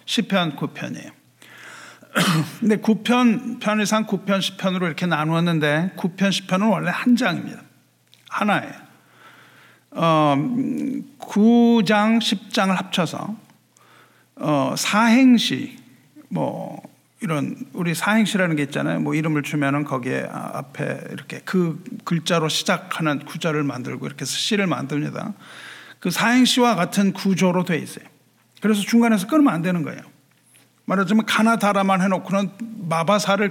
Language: Korean